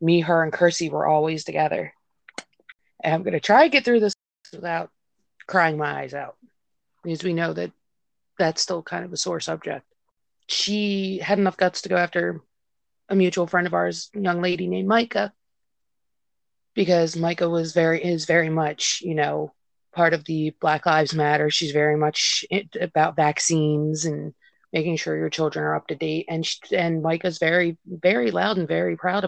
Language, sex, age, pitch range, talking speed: English, female, 30-49, 155-175 Hz, 180 wpm